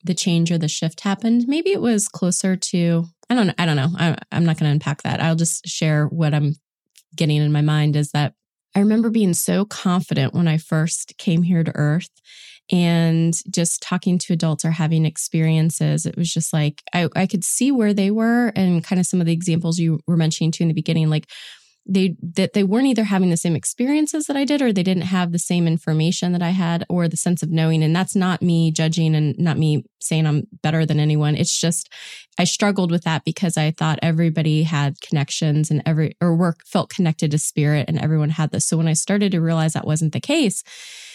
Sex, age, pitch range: female, 20-39, 160-190 Hz